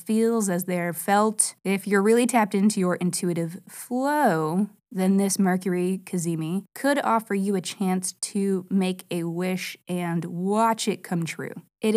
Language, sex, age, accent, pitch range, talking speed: English, female, 20-39, American, 180-215 Hz, 155 wpm